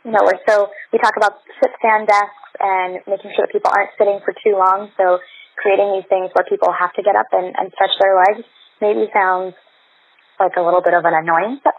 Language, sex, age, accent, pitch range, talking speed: English, female, 20-39, American, 170-205 Hz, 230 wpm